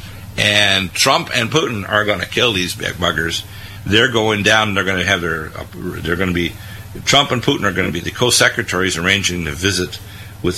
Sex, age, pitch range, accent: male, 50-69, 90-105 Hz, American